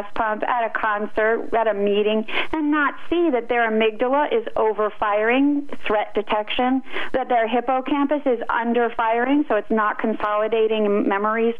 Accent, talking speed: American, 150 wpm